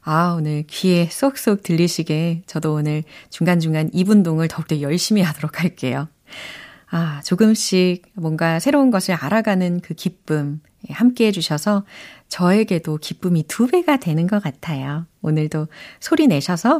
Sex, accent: female, native